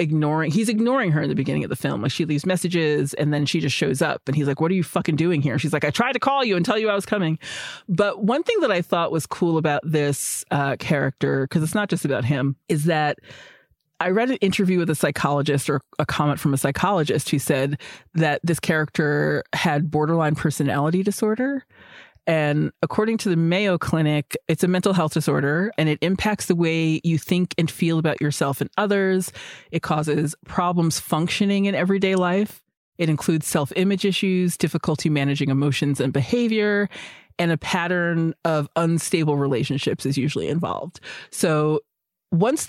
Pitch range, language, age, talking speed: 150-190 Hz, English, 30-49, 190 wpm